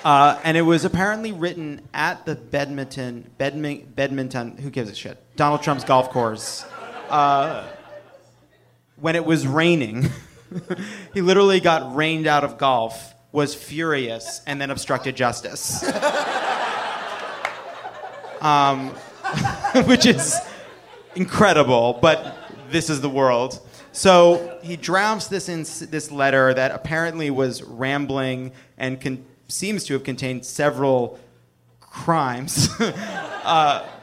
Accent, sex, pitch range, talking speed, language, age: American, male, 125-160 Hz, 115 wpm, English, 30-49